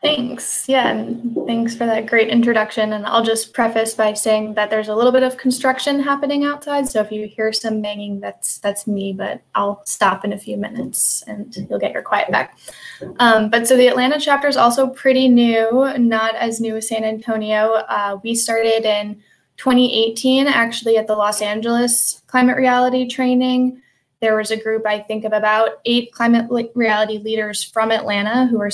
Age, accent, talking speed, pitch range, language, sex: 20-39, American, 190 wpm, 215-245 Hz, English, female